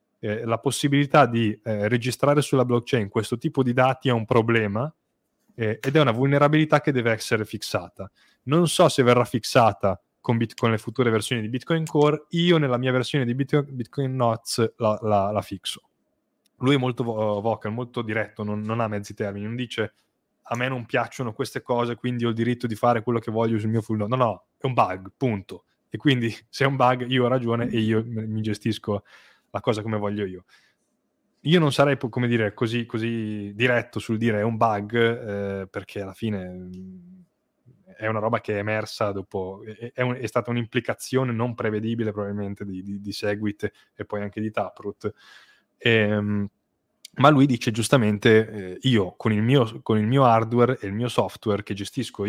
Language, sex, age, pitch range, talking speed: Italian, male, 20-39, 105-125 Hz, 195 wpm